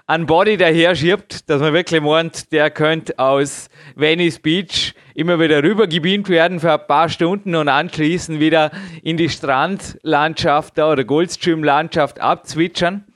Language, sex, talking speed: German, male, 135 wpm